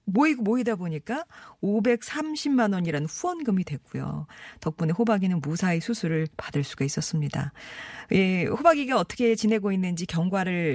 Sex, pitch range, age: female, 155-225 Hz, 40-59